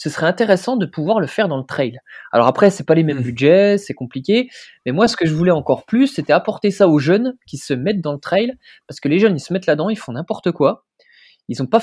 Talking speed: 275 wpm